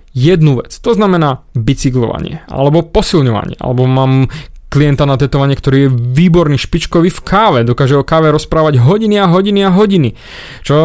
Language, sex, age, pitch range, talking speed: Slovak, male, 20-39, 130-165 Hz, 155 wpm